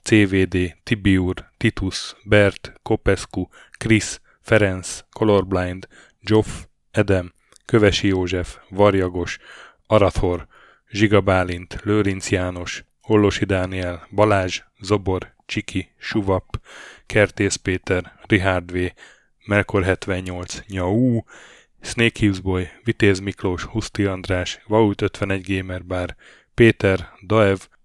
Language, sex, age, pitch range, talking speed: Hungarian, male, 10-29, 90-105 Hz, 95 wpm